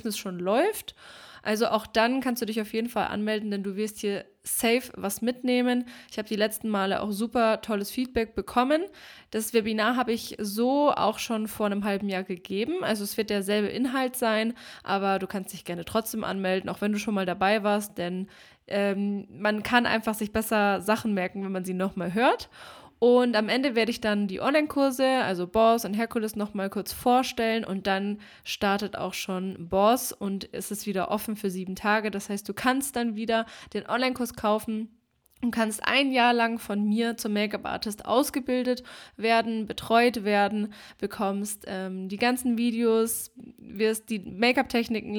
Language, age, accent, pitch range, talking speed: German, 20-39, German, 200-235 Hz, 180 wpm